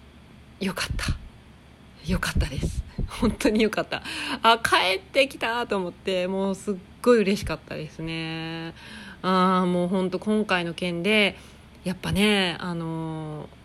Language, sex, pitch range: Japanese, female, 175-230 Hz